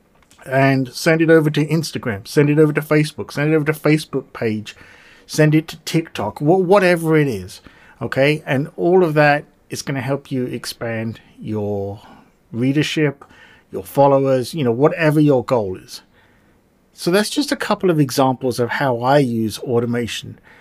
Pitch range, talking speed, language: 125-155 Hz, 170 wpm, English